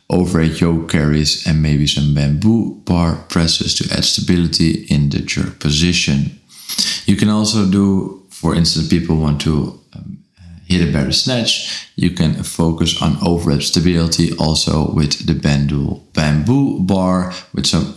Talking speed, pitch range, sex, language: 145 wpm, 80-95 Hz, male, Dutch